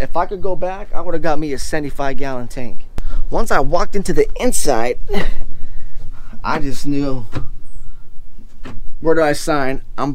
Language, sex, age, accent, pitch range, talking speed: English, male, 20-39, American, 120-170 Hz, 165 wpm